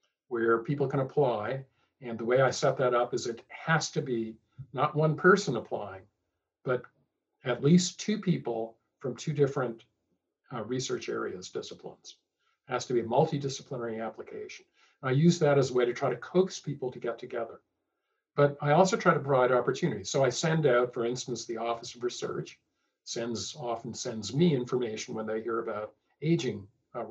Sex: male